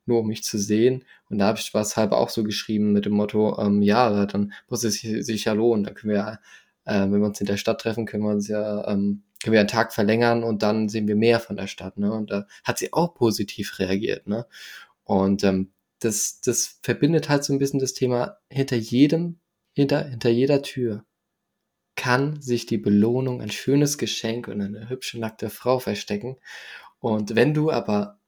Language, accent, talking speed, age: German, German, 210 wpm, 20-39